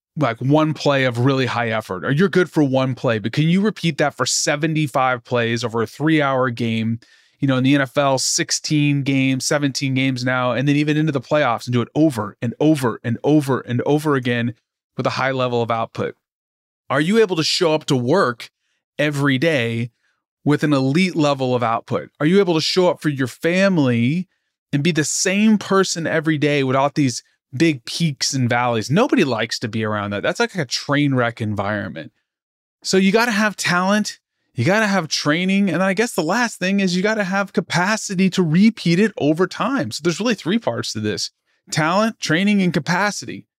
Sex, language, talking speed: male, English, 205 wpm